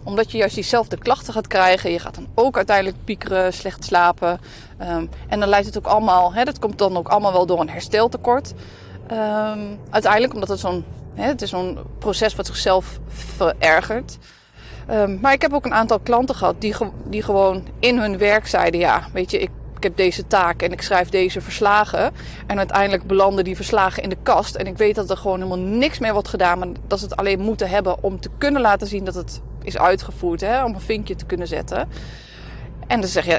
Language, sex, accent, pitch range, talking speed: Dutch, female, Dutch, 180-220 Hz, 205 wpm